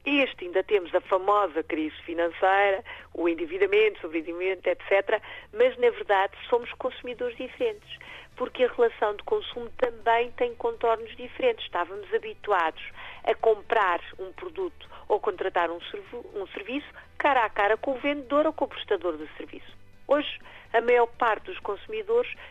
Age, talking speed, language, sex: 50-69, 150 wpm, Portuguese, female